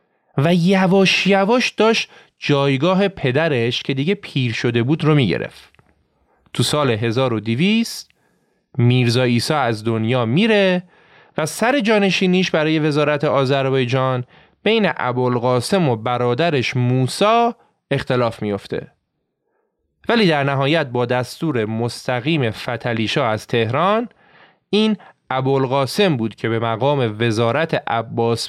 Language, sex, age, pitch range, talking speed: Persian, male, 30-49, 120-165 Hz, 105 wpm